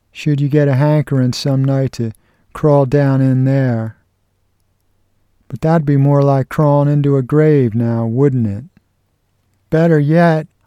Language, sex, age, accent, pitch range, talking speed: English, male, 50-69, American, 120-150 Hz, 145 wpm